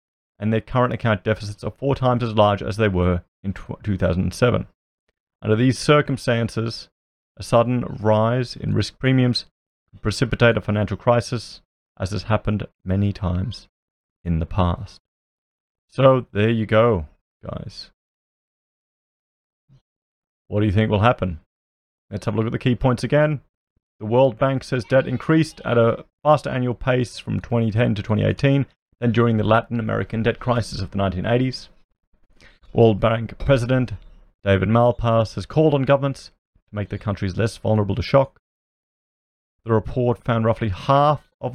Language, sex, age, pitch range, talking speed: English, male, 30-49, 100-125 Hz, 150 wpm